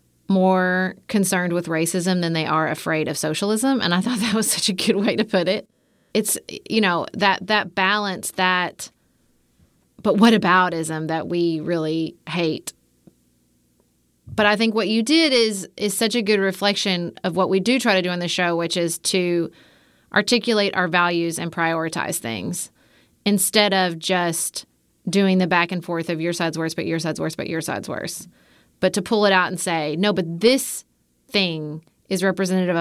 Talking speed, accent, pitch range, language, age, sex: 185 wpm, American, 165-195 Hz, English, 30-49, female